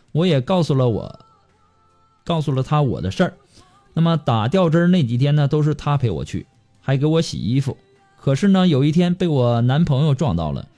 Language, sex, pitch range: Chinese, male, 130-175 Hz